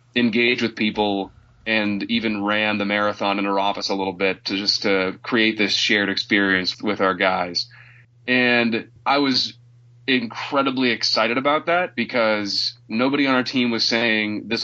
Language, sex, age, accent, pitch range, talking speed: English, male, 30-49, American, 100-120 Hz, 160 wpm